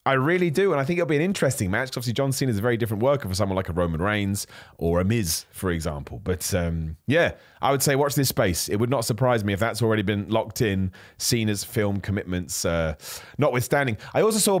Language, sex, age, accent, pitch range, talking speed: English, male, 30-49, British, 100-140 Hz, 240 wpm